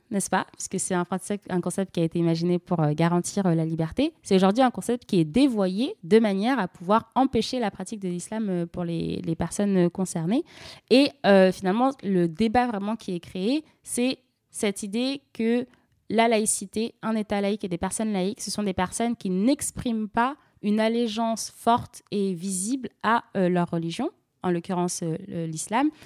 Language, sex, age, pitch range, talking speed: French, female, 20-39, 175-235 Hz, 185 wpm